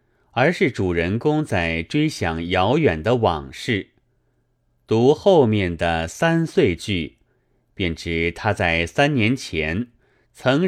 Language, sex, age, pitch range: Chinese, male, 30-49, 85-125 Hz